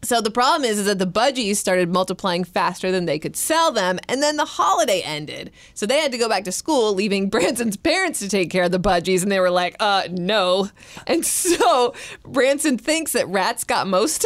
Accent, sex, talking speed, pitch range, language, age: American, female, 220 wpm, 185-255 Hz, English, 20-39